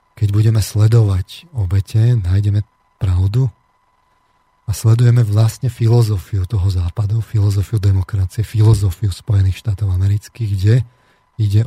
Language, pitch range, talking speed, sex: Slovak, 100-115 Hz, 105 wpm, male